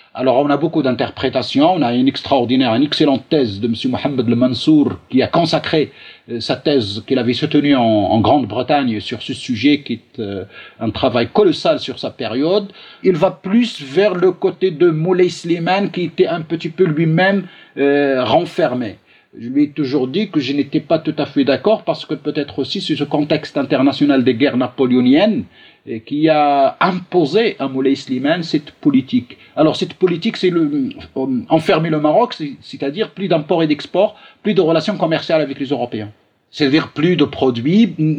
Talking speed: 180 wpm